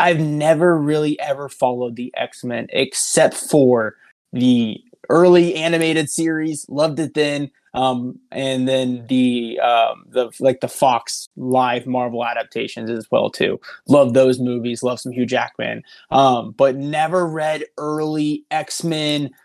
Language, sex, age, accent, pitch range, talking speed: English, male, 20-39, American, 130-165 Hz, 135 wpm